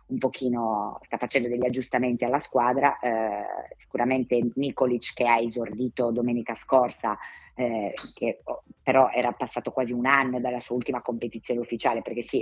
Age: 20-39